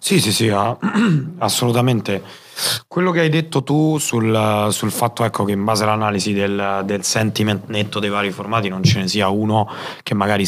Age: 30-49